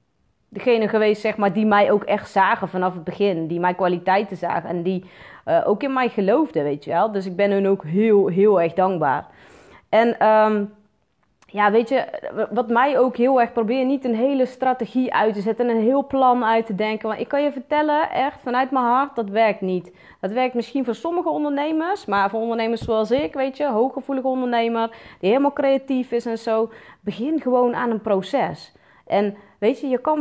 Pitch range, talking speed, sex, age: 200-255 Hz, 205 wpm, female, 30-49